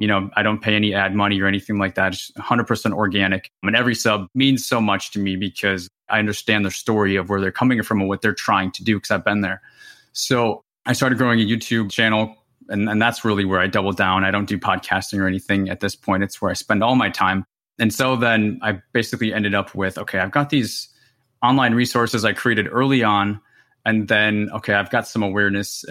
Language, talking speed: English, 230 wpm